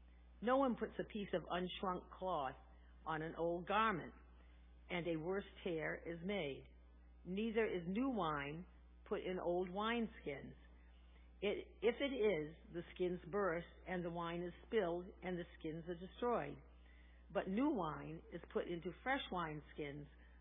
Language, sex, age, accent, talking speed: English, female, 50-69, American, 145 wpm